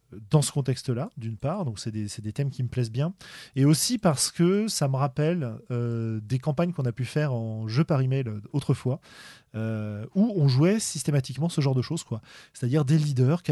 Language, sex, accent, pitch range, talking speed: French, male, French, 120-155 Hz, 215 wpm